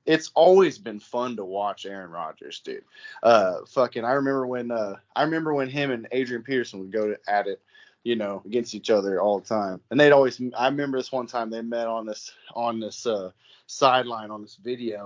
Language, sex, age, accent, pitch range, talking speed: English, male, 20-39, American, 105-135 Hz, 210 wpm